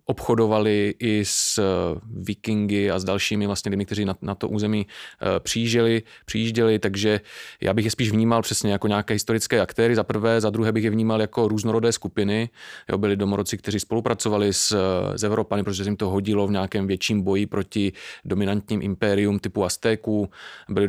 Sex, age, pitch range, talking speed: male, 30-49, 100-115 Hz, 165 wpm